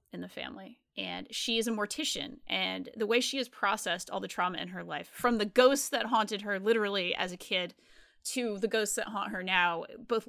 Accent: American